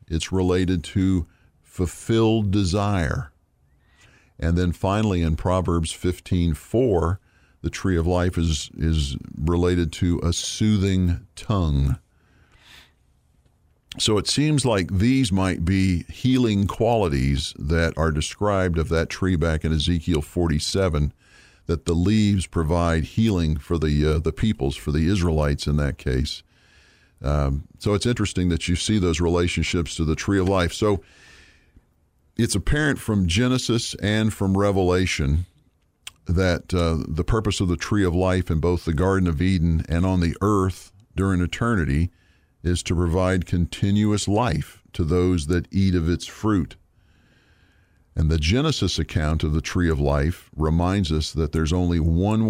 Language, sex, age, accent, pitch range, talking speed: English, male, 50-69, American, 80-95 Hz, 145 wpm